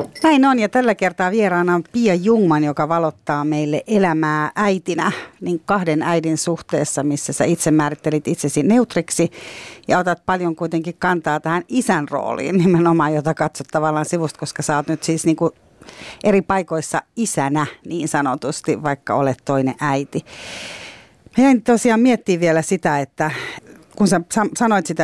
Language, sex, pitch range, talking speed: Finnish, female, 150-190 Hz, 150 wpm